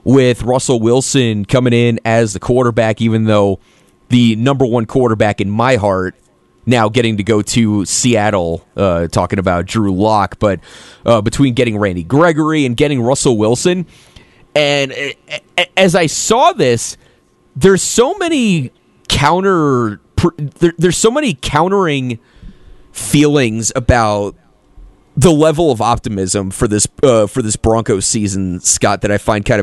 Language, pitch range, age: English, 110-150 Hz, 30-49